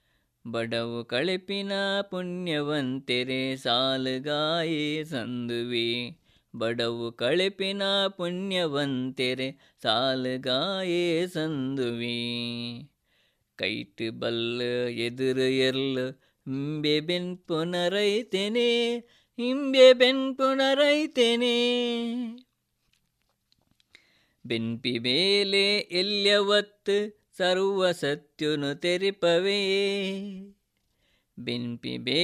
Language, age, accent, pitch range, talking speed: Kannada, 20-39, native, 130-200 Hz, 50 wpm